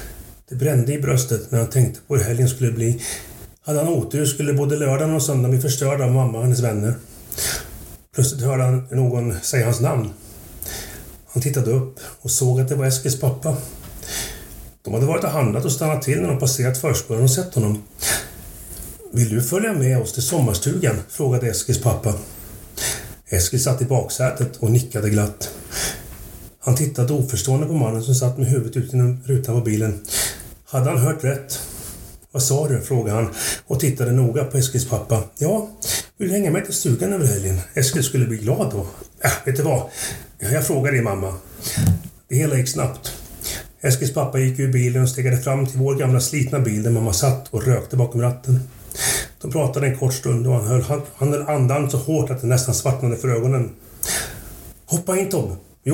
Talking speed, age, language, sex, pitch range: 185 wpm, 30-49, Swedish, male, 115-140 Hz